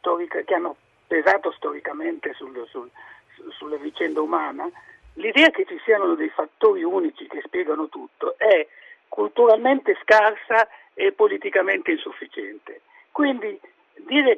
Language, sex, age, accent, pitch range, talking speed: Italian, male, 60-79, native, 300-425 Hz, 105 wpm